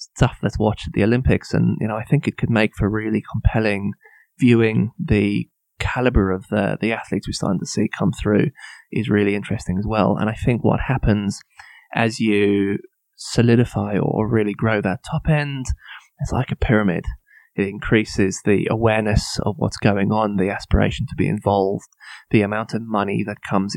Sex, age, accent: male, 20-39, British